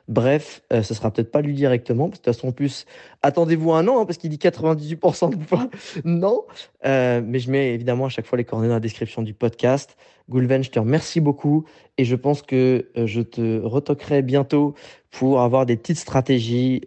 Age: 20-39